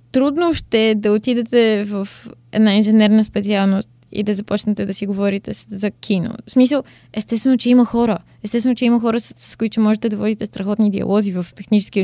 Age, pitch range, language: 20-39, 200-235 Hz, Bulgarian